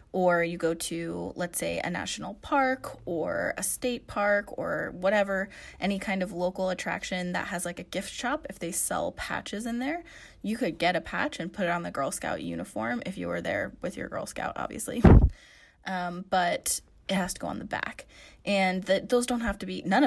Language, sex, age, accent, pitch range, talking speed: English, female, 20-39, American, 170-205 Hz, 210 wpm